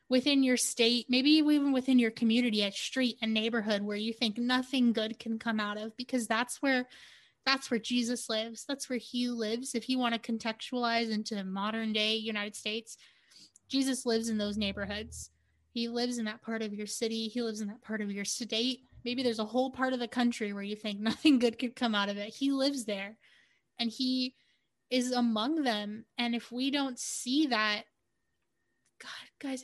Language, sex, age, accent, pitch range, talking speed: English, female, 20-39, American, 220-255 Hz, 200 wpm